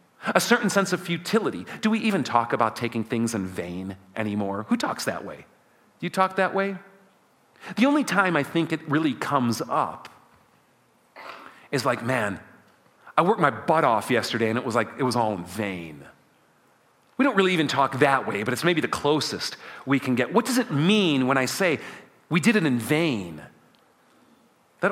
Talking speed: 190 wpm